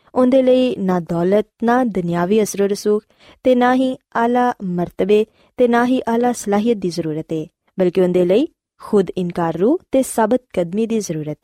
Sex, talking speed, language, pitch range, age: female, 170 wpm, Punjabi, 180-240 Hz, 20-39